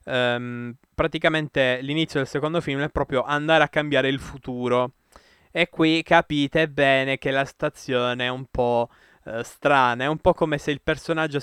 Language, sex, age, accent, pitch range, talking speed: Italian, male, 20-39, native, 125-155 Hz, 160 wpm